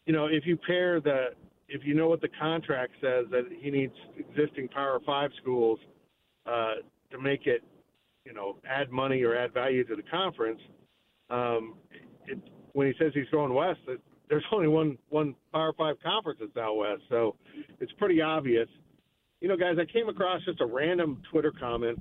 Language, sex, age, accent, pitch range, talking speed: English, male, 50-69, American, 120-165 Hz, 180 wpm